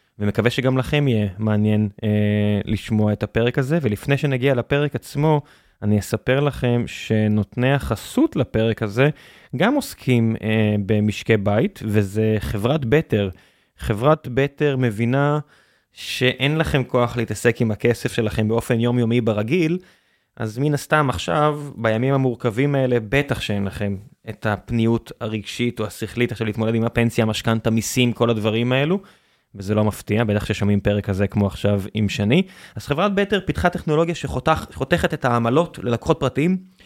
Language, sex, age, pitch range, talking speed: Hebrew, male, 20-39, 110-145 Hz, 145 wpm